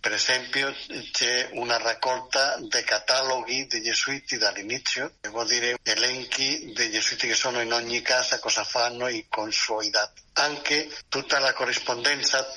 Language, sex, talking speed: Italian, male, 155 wpm